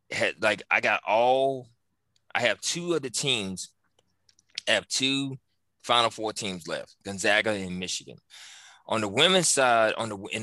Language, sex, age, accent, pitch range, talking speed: English, male, 20-39, American, 95-115 Hz, 160 wpm